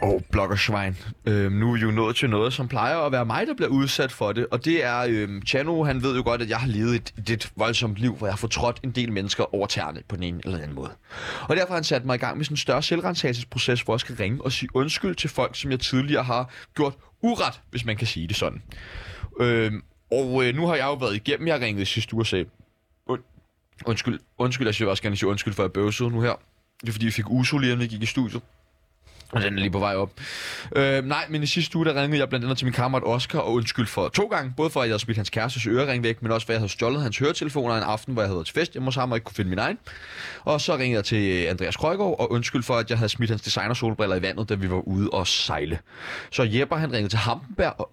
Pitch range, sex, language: 105-135 Hz, male, Danish